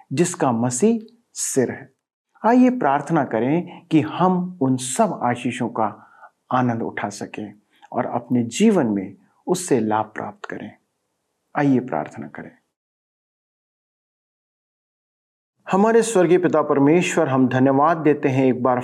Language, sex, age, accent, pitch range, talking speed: Hindi, male, 40-59, native, 130-190 Hz, 120 wpm